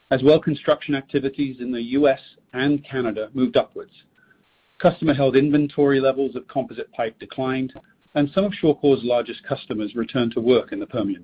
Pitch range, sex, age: 120-150 Hz, male, 40-59